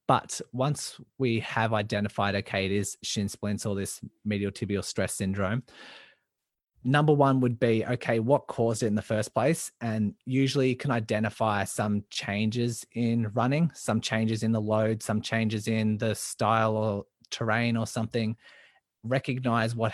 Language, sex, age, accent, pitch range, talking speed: English, male, 20-39, Australian, 105-120 Hz, 160 wpm